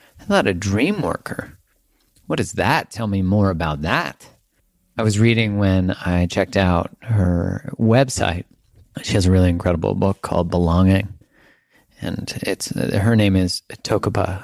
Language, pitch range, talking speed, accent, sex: English, 90-105 Hz, 150 wpm, American, male